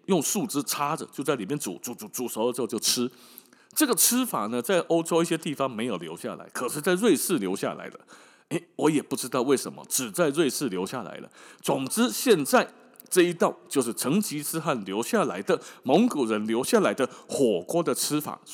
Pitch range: 135-195 Hz